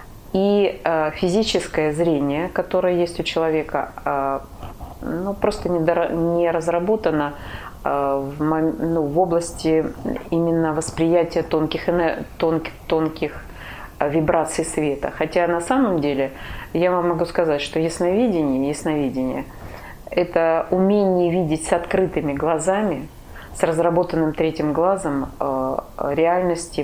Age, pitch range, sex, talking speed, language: 30-49, 145-180 Hz, female, 100 wpm, Russian